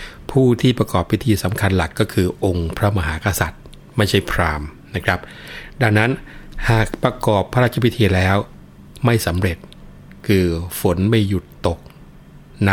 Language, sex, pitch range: Thai, male, 85-110 Hz